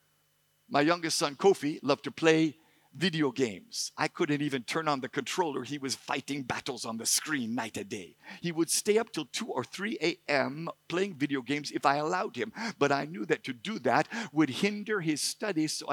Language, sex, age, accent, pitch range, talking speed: English, male, 50-69, American, 140-175 Hz, 205 wpm